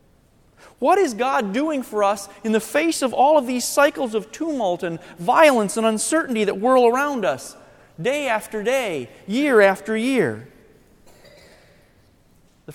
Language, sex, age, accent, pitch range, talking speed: English, male, 40-59, American, 185-255 Hz, 145 wpm